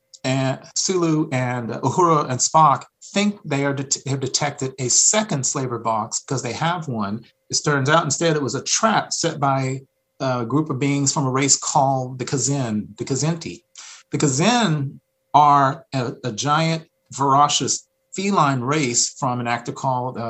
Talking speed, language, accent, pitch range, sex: 165 wpm, English, American, 125-155 Hz, male